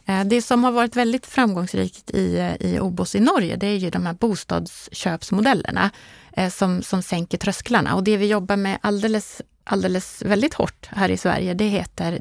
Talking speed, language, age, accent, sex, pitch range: 170 wpm, Swedish, 30-49, native, female, 175-210 Hz